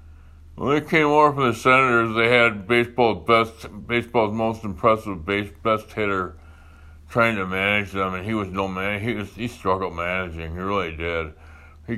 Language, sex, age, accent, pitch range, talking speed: English, male, 60-79, American, 80-115 Hz, 175 wpm